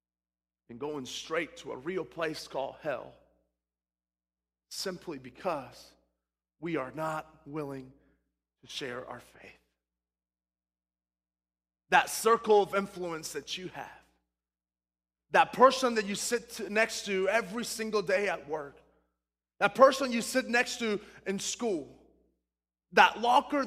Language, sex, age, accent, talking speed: English, male, 30-49, American, 120 wpm